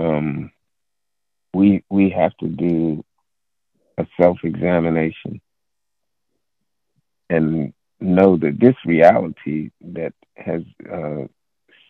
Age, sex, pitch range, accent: 50-69, male, 80-95 Hz, American